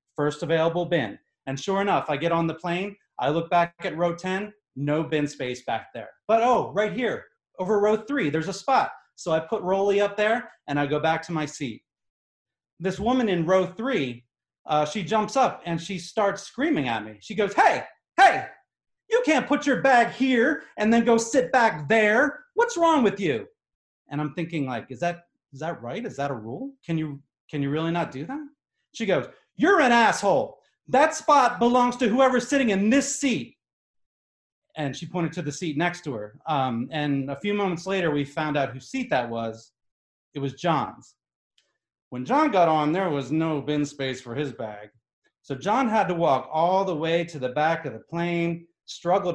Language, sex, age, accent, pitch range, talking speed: English, male, 30-49, American, 145-210 Hz, 205 wpm